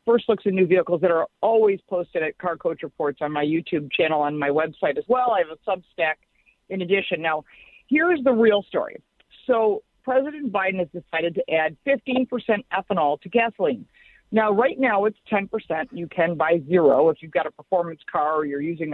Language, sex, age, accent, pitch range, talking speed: English, female, 50-69, American, 170-235 Hz, 200 wpm